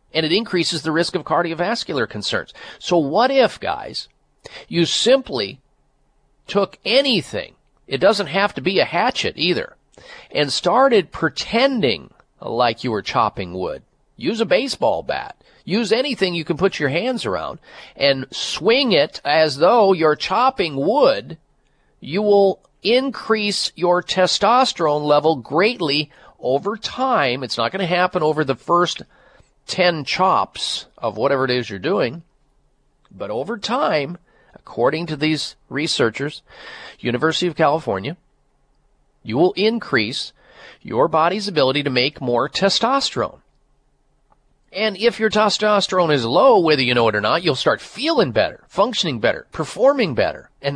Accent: American